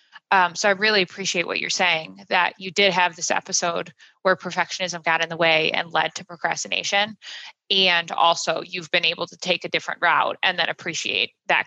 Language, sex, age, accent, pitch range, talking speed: English, female, 20-39, American, 170-195 Hz, 195 wpm